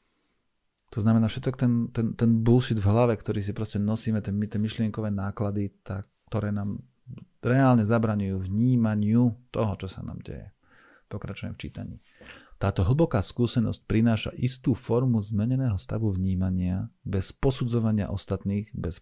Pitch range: 100-120 Hz